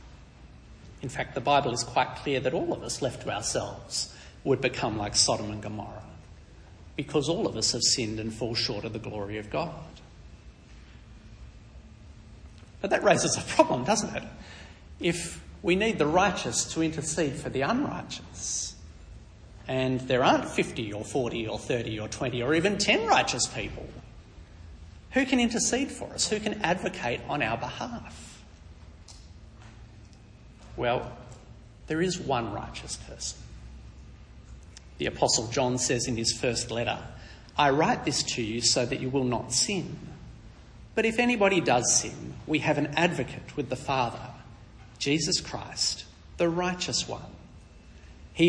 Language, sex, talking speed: English, male, 150 wpm